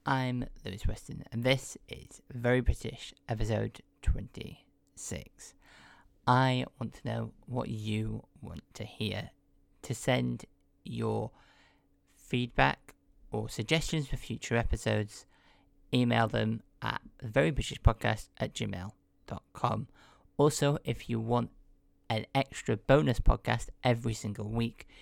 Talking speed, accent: 110 wpm, British